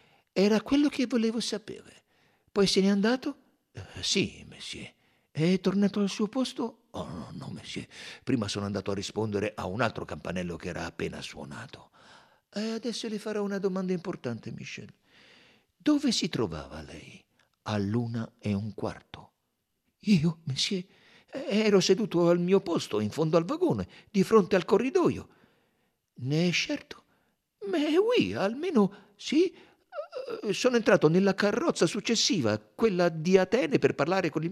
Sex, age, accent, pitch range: male, 60-79, native, 135-215 Hz